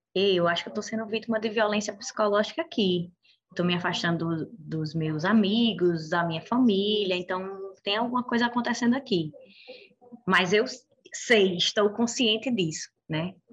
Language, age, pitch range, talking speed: Portuguese, 20-39, 170-225 Hz, 145 wpm